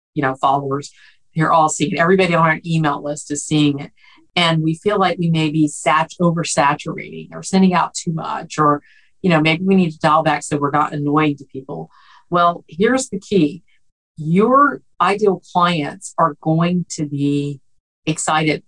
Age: 50-69